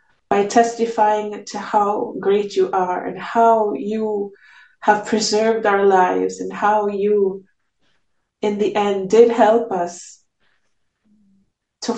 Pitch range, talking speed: 185-210 Hz, 120 wpm